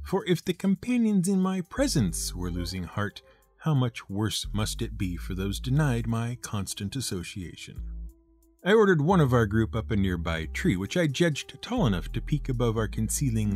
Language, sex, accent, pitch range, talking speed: English, male, American, 100-155 Hz, 185 wpm